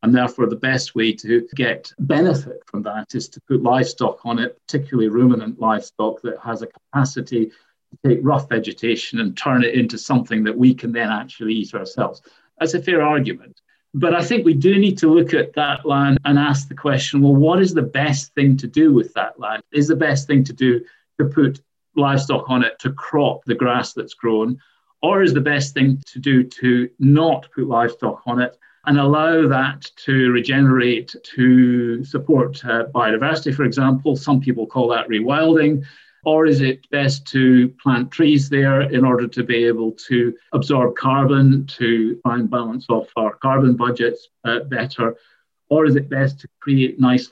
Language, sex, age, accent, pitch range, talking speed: English, male, 40-59, British, 125-145 Hz, 190 wpm